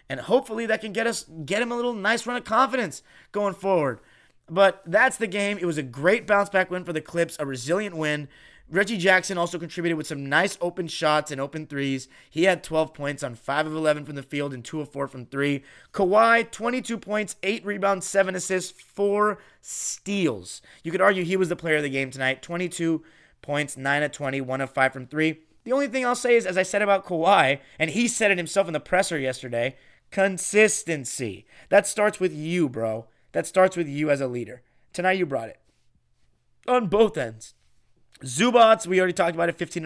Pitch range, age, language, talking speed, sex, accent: 145-205 Hz, 30-49, English, 210 wpm, male, American